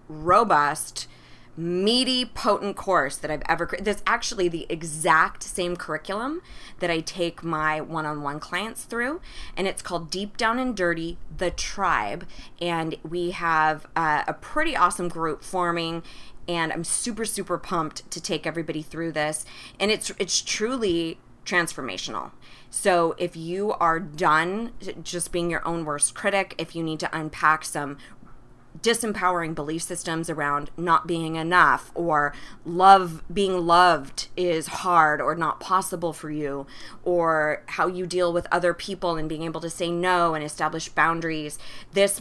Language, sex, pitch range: English, female, 160-185 Hz